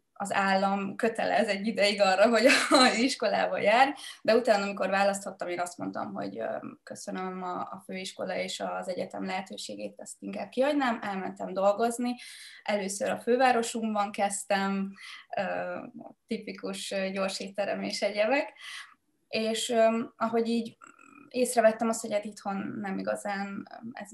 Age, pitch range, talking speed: 20-39, 195-230 Hz, 120 wpm